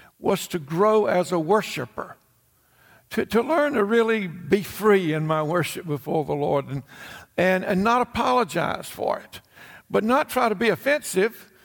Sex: male